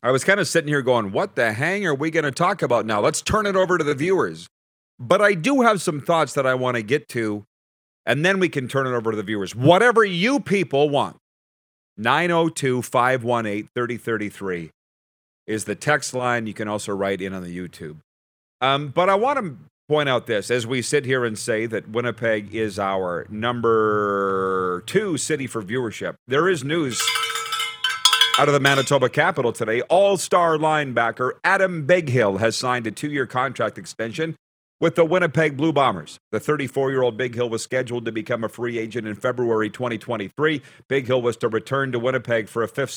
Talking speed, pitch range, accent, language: 200 wpm, 110-155 Hz, American, English